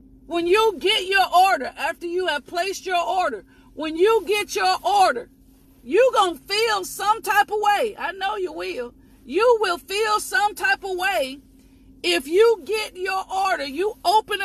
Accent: American